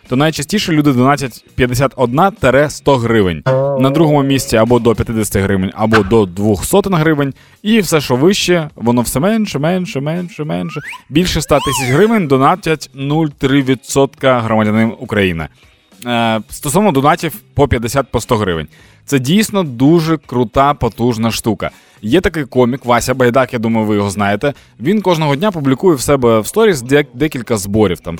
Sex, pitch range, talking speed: male, 115-155 Hz, 145 wpm